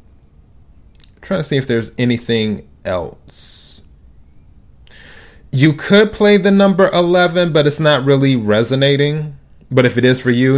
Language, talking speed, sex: English, 135 wpm, male